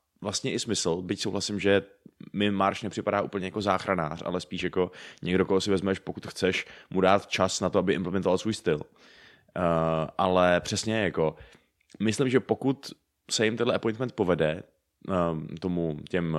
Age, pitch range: 20-39, 85-105 Hz